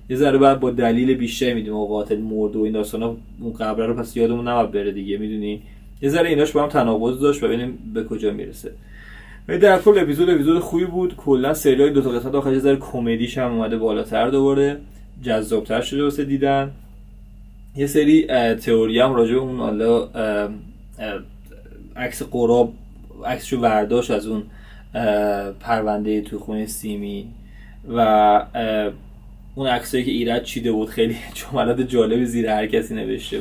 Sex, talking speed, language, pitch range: male, 140 wpm, Persian, 110-125 Hz